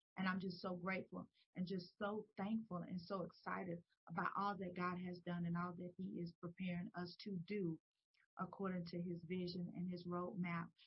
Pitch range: 175-195 Hz